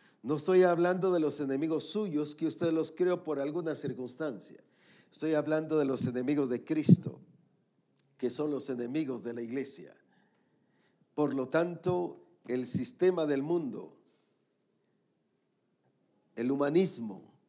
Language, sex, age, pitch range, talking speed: English, male, 50-69, 130-165 Hz, 125 wpm